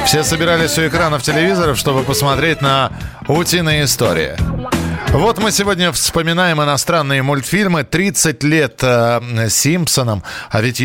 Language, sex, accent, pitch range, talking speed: Russian, male, native, 115-160 Hz, 120 wpm